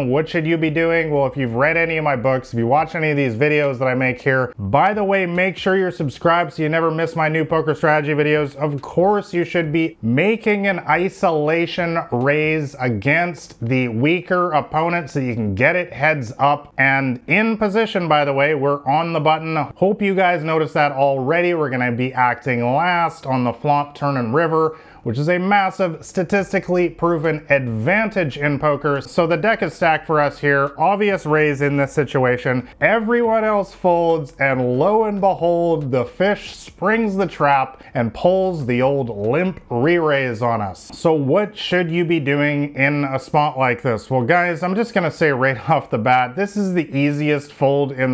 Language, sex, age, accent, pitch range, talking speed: English, male, 30-49, American, 135-175 Hz, 195 wpm